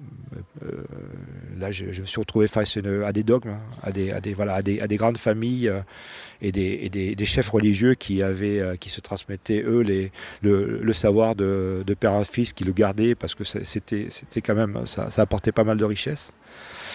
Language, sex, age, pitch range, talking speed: French, male, 40-59, 95-115 Hz, 205 wpm